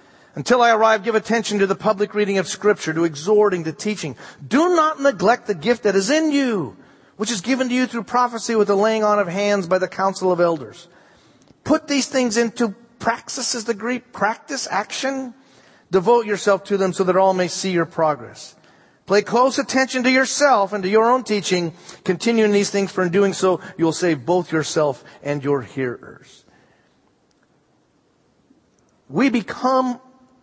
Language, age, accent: English, 40-59, American